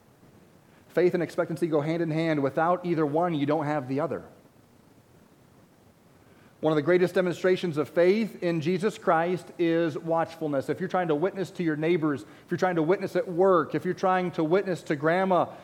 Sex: male